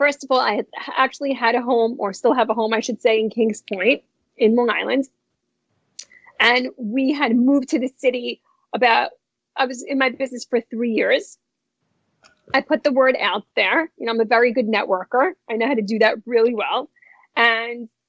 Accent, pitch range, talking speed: American, 230-285 Hz, 200 wpm